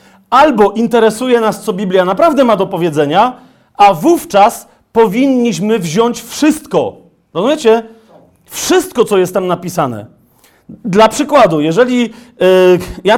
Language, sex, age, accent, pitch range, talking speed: Polish, male, 40-59, native, 205-255 Hz, 110 wpm